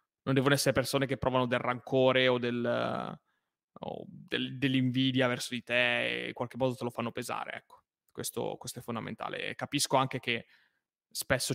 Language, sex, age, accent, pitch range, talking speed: Italian, male, 20-39, native, 120-130 Hz, 165 wpm